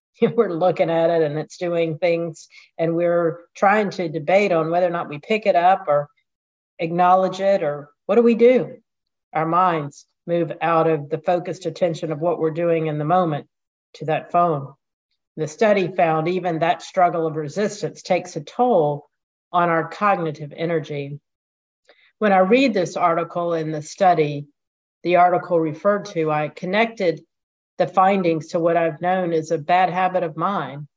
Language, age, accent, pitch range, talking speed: English, 50-69, American, 150-180 Hz, 170 wpm